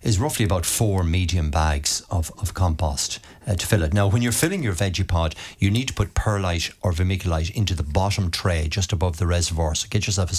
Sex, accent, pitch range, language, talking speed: male, Irish, 85-100 Hz, English, 225 wpm